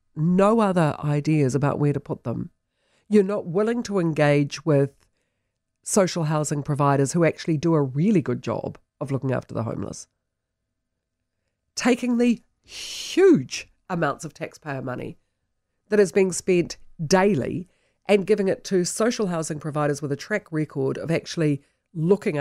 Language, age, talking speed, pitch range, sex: English, 50-69, 145 wpm, 130-195 Hz, female